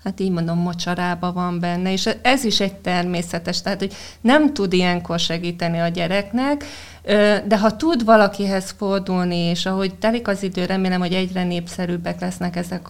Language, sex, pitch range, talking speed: Hungarian, female, 175-210 Hz, 165 wpm